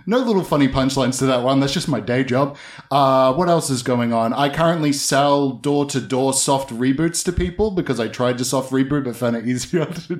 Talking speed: 220 wpm